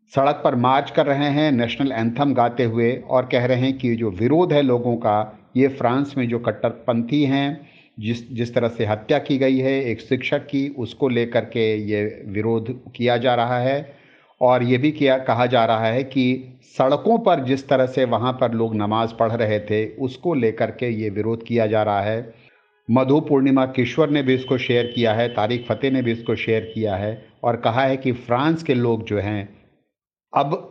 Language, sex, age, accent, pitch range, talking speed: Hindi, male, 50-69, native, 110-135 Hz, 200 wpm